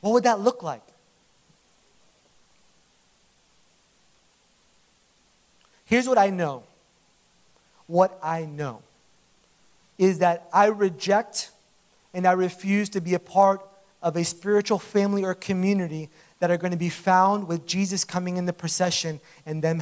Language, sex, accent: English, male, American